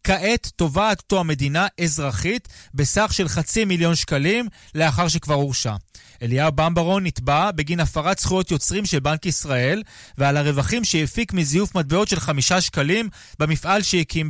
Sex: male